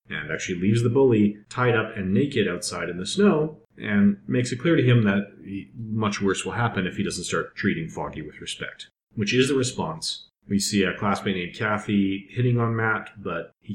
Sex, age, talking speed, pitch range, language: male, 40-59, 205 wpm, 90-110 Hz, English